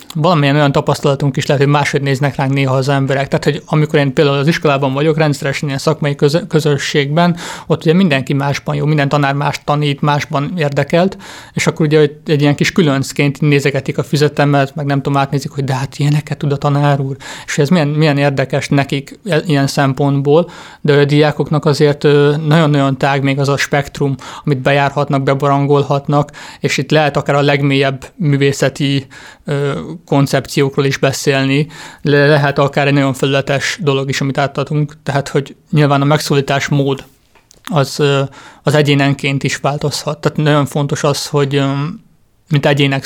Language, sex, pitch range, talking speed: Hungarian, male, 140-150 Hz, 160 wpm